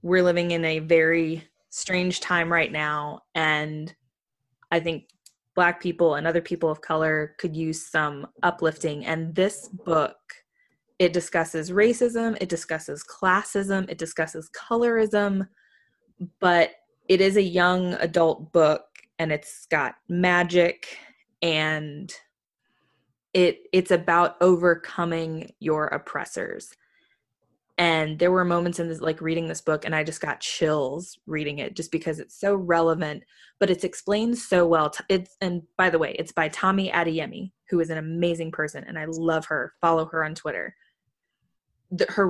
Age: 20-39